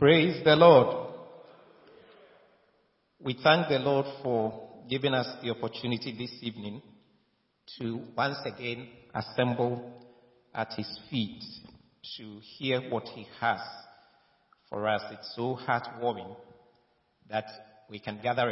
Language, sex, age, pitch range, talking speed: English, male, 50-69, 110-130 Hz, 115 wpm